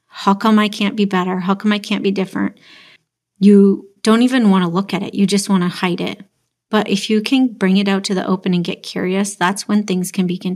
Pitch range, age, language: 185-215 Hz, 30-49, English